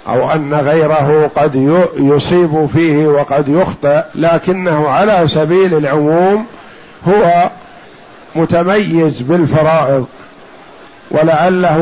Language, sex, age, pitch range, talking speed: Arabic, male, 50-69, 155-175 Hz, 80 wpm